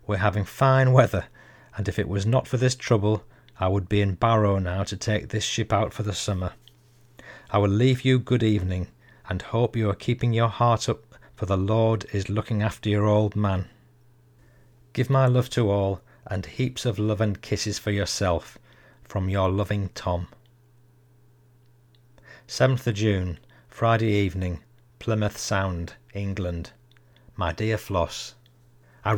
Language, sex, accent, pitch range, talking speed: English, male, British, 100-120 Hz, 160 wpm